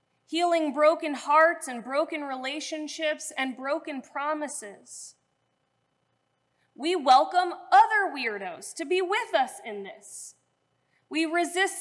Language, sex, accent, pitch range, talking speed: English, female, American, 205-330 Hz, 105 wpm